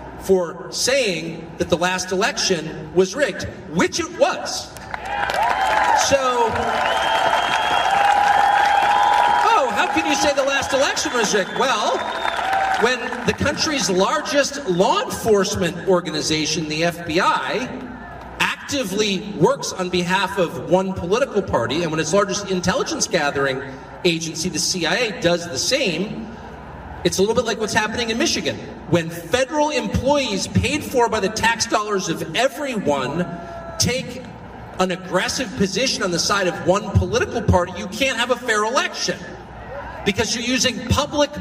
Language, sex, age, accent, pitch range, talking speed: English, male, 40-59, American, 175-255 Hz, 135 wpm